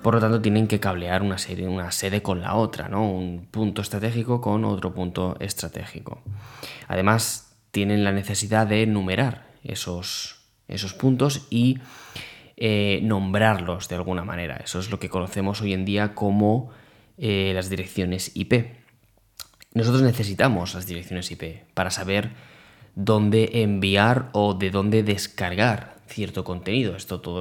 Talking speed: 145 wpm